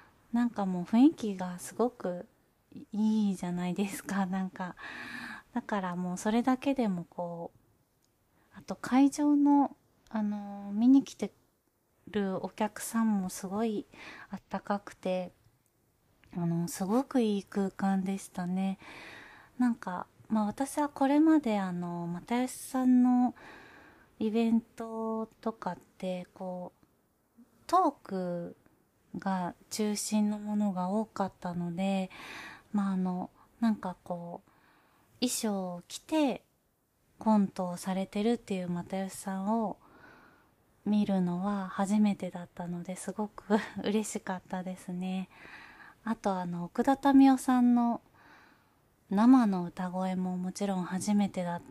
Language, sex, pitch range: Japanese, female, 180-230 Hz